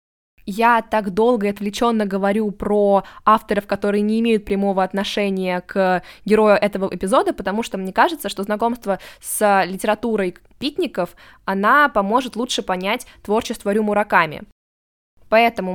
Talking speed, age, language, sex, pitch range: 125 wpm, 20-39, Russian, female, 185-225 Hz